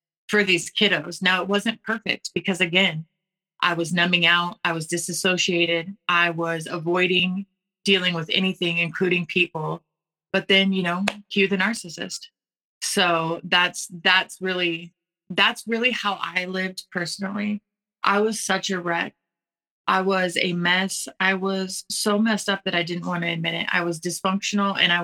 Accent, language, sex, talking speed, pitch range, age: American, English, female, 160 wpm, 170-195 Hz, 20-39